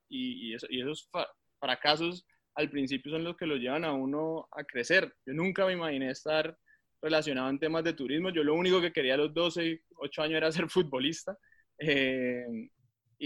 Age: 20-39